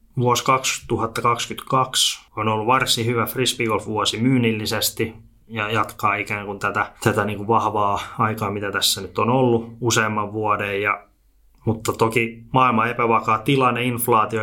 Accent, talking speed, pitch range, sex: native, 135 wpm, 105-115 Hz, male